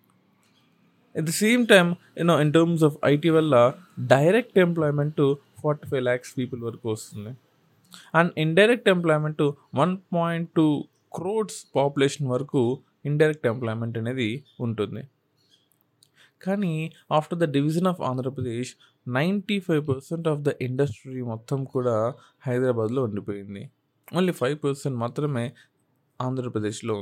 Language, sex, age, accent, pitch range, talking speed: Telugu, male, 20-39, native, 130-165 Hz, 115 wpm